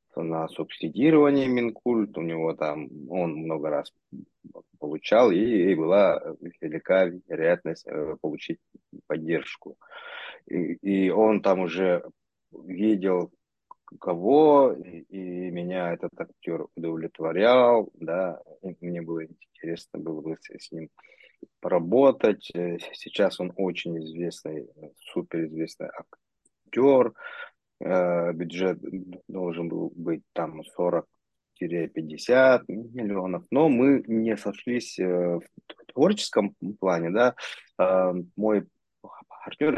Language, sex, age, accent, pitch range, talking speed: Russian, male, 20-39, native, 85-105 Hz, 95 wpm